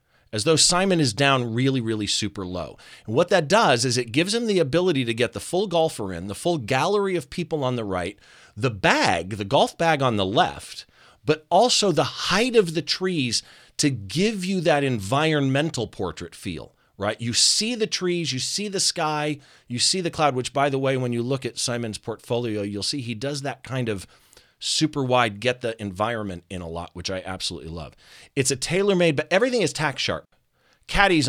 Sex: male